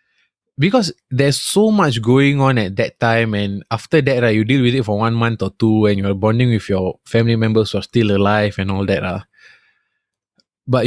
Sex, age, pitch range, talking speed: male, 20-39, 105-135 Hz, 215 wpm